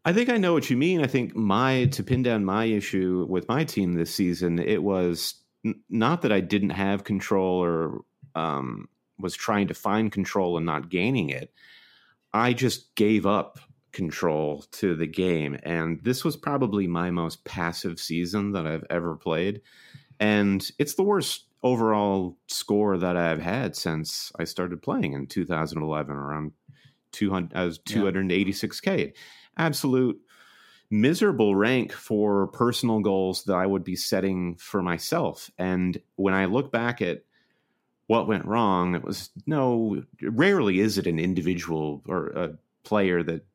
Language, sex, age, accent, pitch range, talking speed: English, male, 30-49, American, 85-120 Hz, 155 wpm